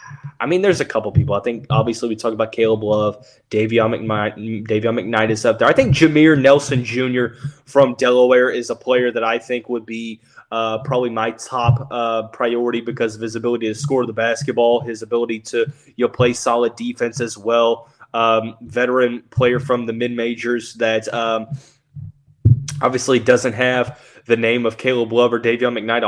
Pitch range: 115-135 Hz